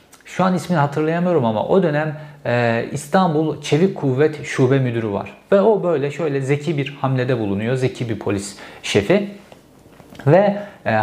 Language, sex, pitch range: Turkish, male, 120-165 Hz